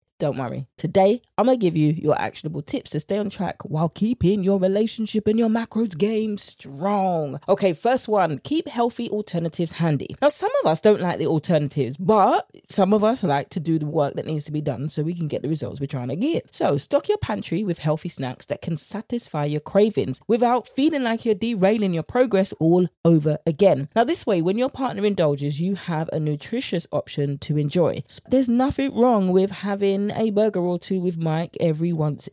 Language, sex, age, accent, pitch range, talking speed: English, female, 20-39, British, 160-220 Hz, 205 wpm